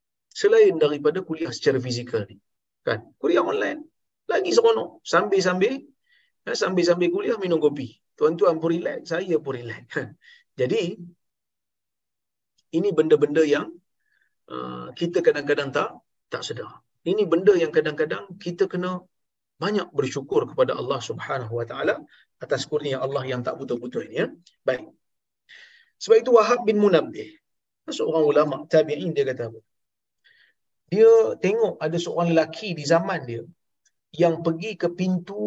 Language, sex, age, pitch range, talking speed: Malayalam, male, 40-59, 150-220 Hz, 140 wpm